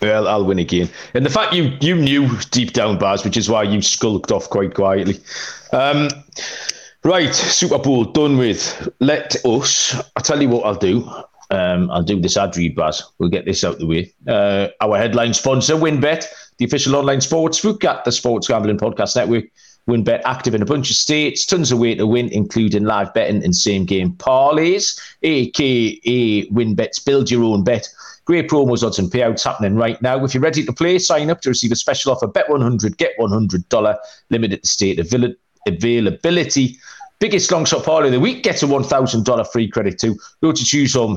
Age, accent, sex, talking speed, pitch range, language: 40-59, British, male, 195 wpm, 105-145 Hz, English